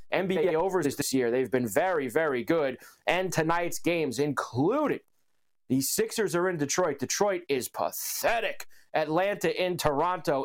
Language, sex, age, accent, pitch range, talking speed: English, male, 30-49, American, 135-175 Hz, 140 wpm